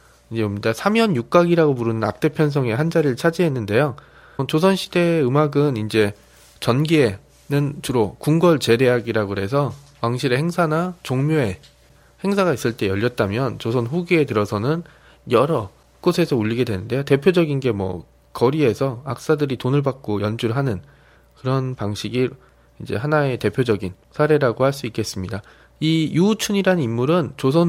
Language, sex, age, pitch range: Korean, male, 20-39, 115-170 Hz